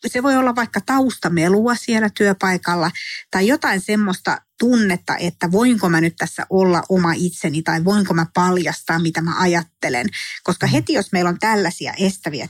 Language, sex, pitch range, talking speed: Finnish, female, 165-205 Hz, 160 wpm